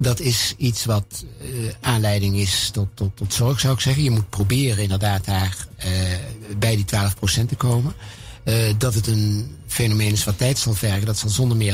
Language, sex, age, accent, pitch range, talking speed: Dutch, male, 60-79, Dutch, 100-115 Hz, 195 wpm